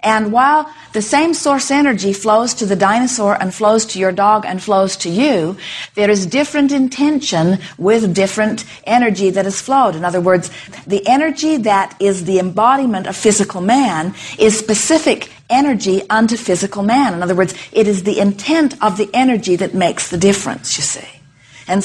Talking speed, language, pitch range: 175 wpm, English, 180-225 Hz